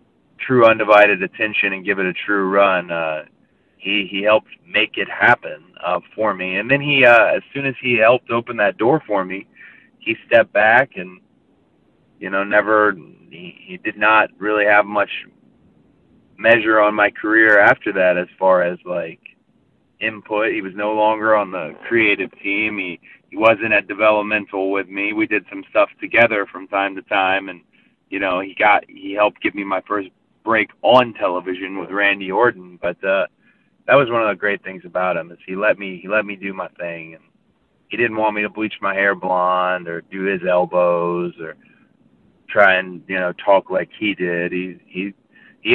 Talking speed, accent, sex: 190 wpm, American, male